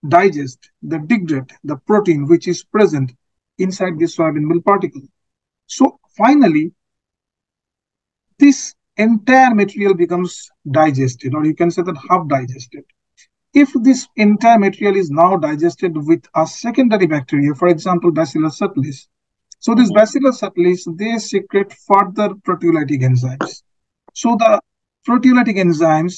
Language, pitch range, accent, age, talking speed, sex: English, 155-210 Hz, Indian, 50-69, 125 wpm, male